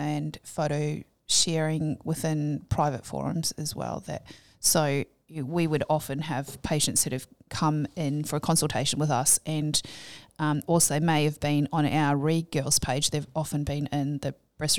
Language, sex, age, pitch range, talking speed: English, female, 20-39, 145-160 Hz, 160 wpm